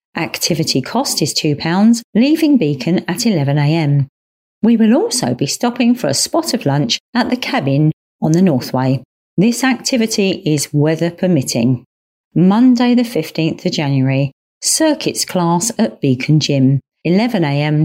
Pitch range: 145-230 Hz